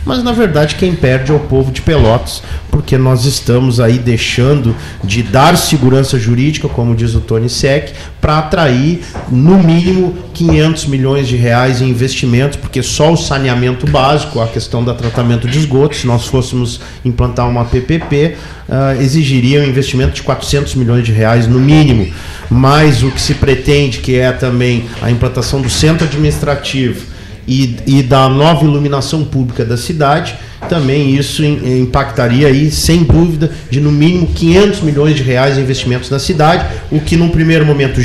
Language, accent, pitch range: Portuguese, Brazilian, 125-155 Hz